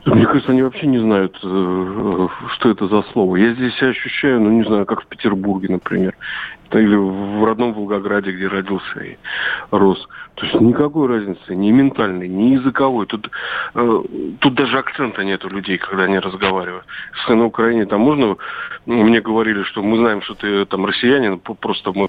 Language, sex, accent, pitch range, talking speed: Russian, male, native, 95-115 Hz, 170 wpm